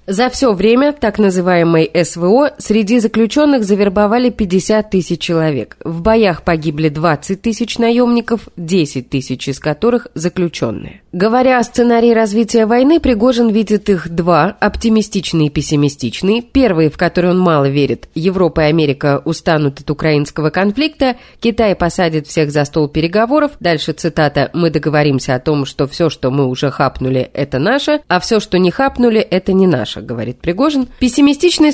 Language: Russian